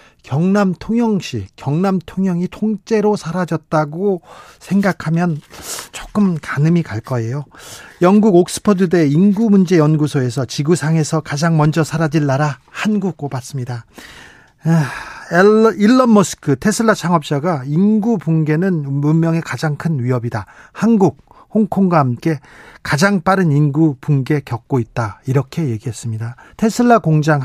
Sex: male